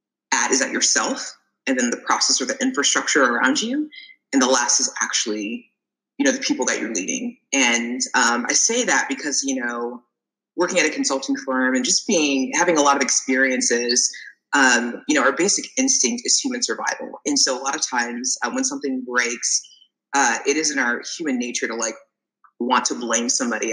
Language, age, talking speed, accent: English, 20-39, 195 wpm, American